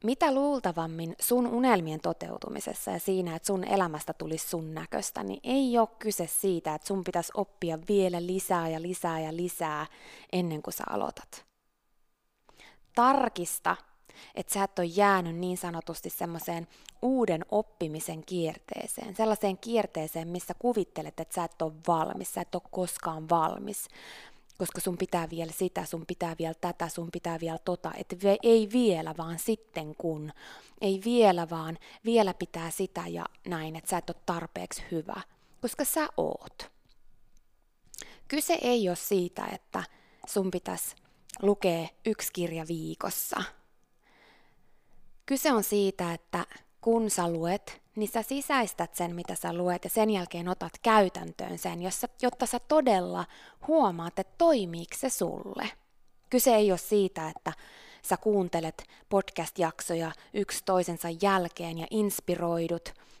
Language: Finnish